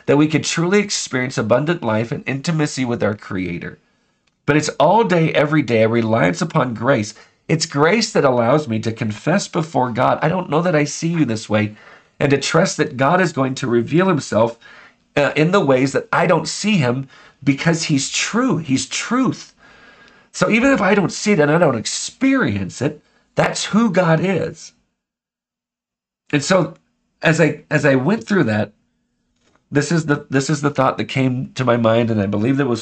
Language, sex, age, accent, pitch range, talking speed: English, male, 40-59, American, 120-170 Hz, 190 wpm